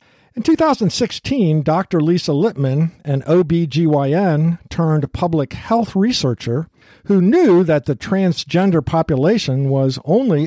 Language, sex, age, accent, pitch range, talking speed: English, male, 50-69, American, 140-195 Hz, 90 wpm